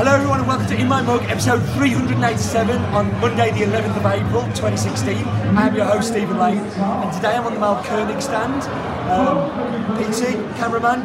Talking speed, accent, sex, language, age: 180 wpm, British, male, English, 30-49